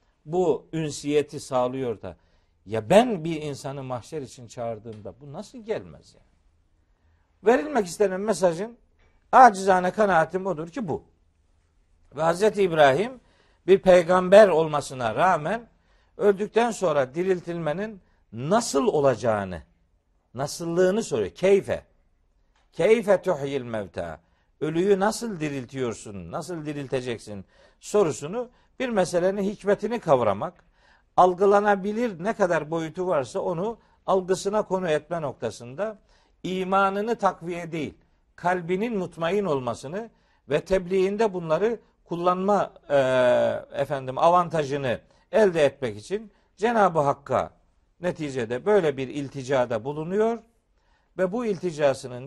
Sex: male